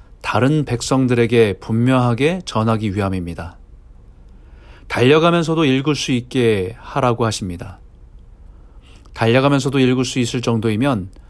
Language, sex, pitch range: Korean, male, 105-140 Hz